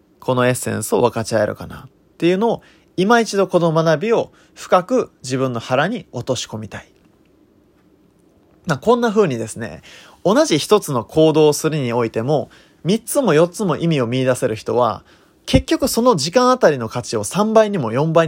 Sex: male